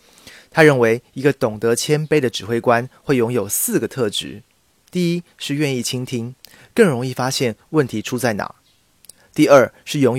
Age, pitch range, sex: 30-49, 110-145 Hz, male